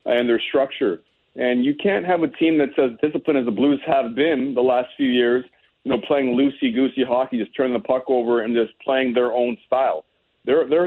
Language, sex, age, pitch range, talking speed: English, male, 40-59, 125-155 Hz, 215 wpm